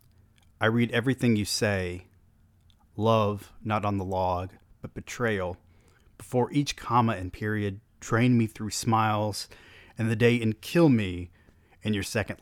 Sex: male